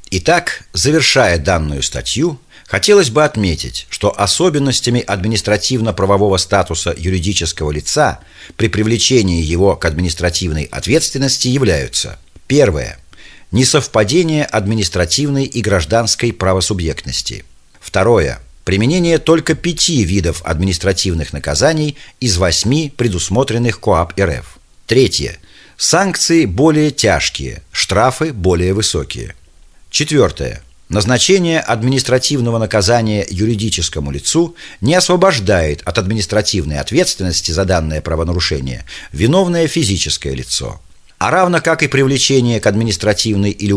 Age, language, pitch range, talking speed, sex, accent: 40-59, Russian, 90-135 Hz, 95 wpm, male, native